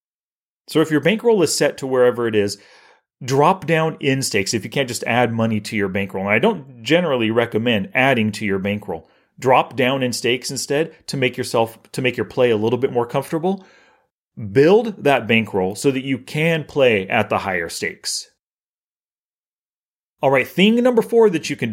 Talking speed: 190 wpm